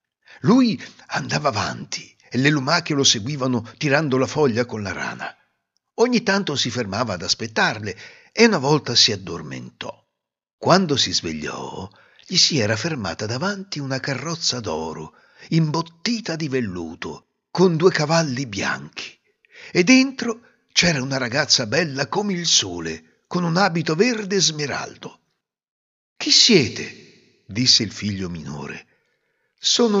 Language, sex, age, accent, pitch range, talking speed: Italian, male, 60-79, native, 125-195 Hz, 130 wpm